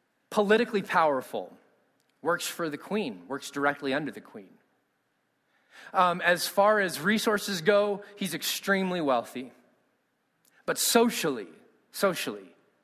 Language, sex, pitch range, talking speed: English, male, 150-225 Hz, 110 wpm